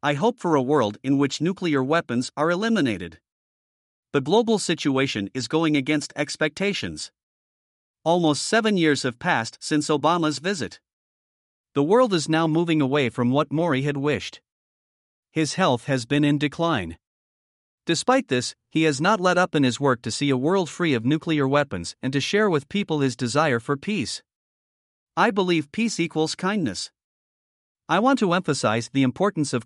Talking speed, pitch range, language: 165 wpm, 135-180 Hz, English